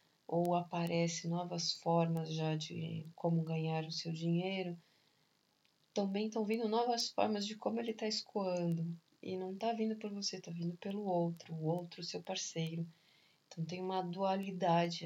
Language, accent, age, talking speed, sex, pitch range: Portuguese, Brazilian, 20-39, 155 wpm, female, 170-200 Hz